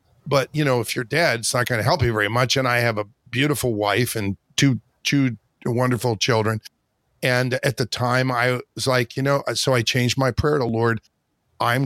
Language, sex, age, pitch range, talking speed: English, male, 40-59, 115-135 Hz, 210 wpm